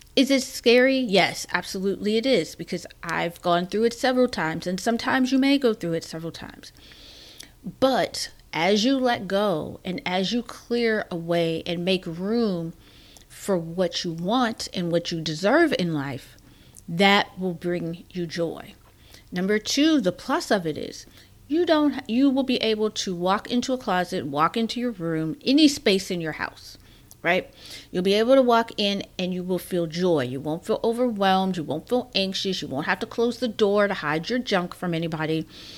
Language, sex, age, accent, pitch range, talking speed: English, female, 40-59, American, 170-230 Hz, 185 wpm